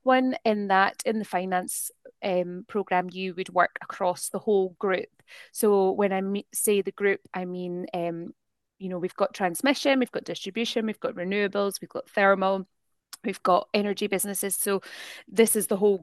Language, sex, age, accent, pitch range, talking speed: English, female, 20-39, British, 180-215 Hz, 175 wpm